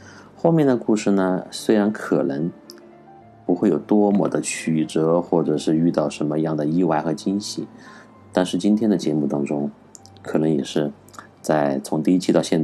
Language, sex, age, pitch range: Chinese, male, 30-49, 80-105 Hz